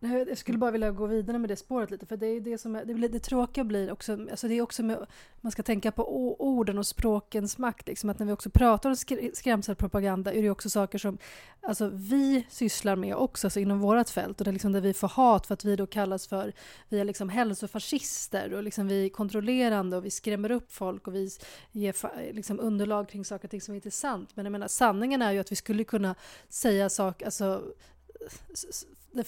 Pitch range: 200-235 Hz